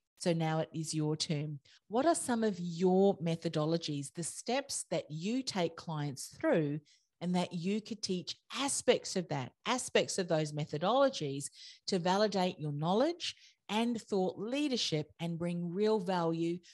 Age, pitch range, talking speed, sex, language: 40-59, 155-210 Hz, 150 wpm, female, English